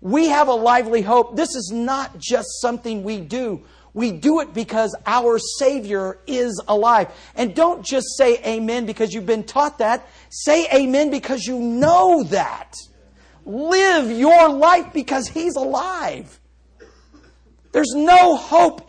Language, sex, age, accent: English, male, 50-69, American